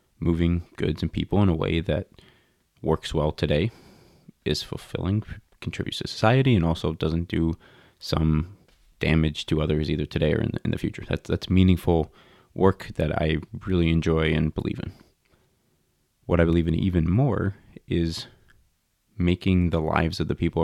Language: English